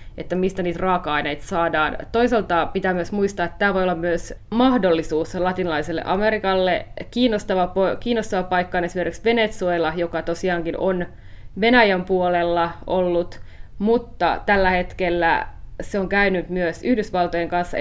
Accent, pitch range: native, 165-190 Hz